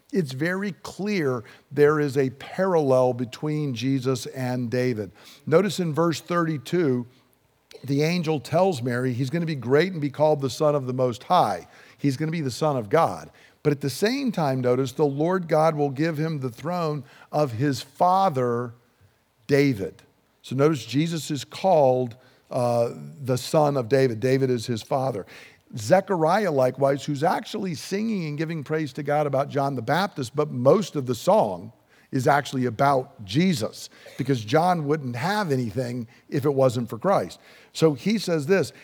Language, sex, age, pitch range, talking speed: English, male, 50-69, 130-165 Hz, 165 wpm